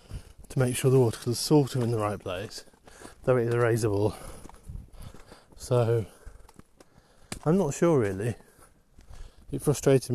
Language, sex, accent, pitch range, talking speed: English, male, British, 105-125 Hz, 130 wpm